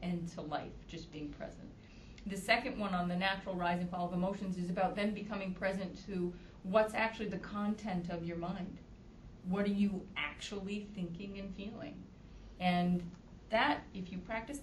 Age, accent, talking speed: 40-59, American, 170 wpm